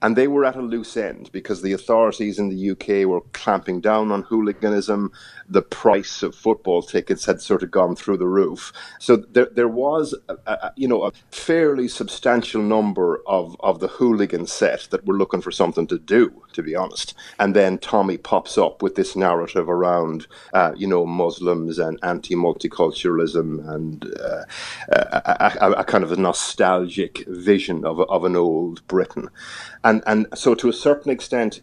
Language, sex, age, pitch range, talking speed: English, male, 30-49, 95-120 Hz, 180 wpm